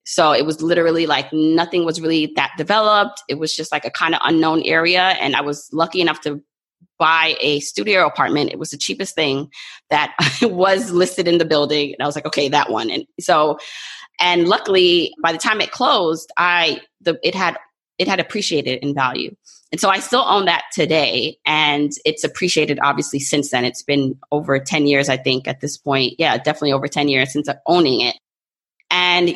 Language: English